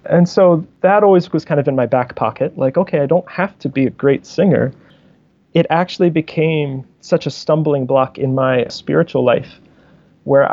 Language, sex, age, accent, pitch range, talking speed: English, male, 30-49, American, 135-165 Hz, 190 wpm